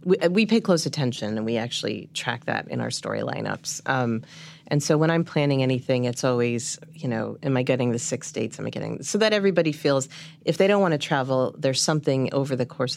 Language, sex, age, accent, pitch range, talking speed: English, female, 40-59, American, 135-165 Hz, 225 wpm